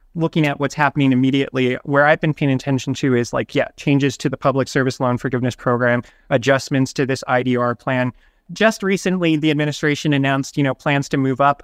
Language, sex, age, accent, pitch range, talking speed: English, male, 30-49, American, 130-155 Hz, 195 wpm